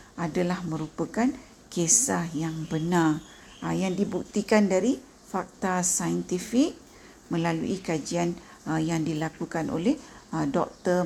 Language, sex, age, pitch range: Malay, female, 50-69, 180-235 Hz